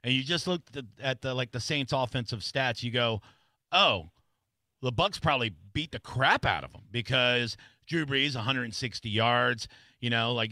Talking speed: 190 wpm